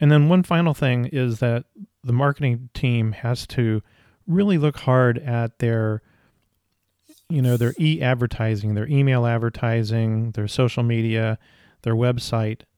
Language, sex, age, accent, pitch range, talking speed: English, male, 40-59, American, 110-135 Hz, 135 wpm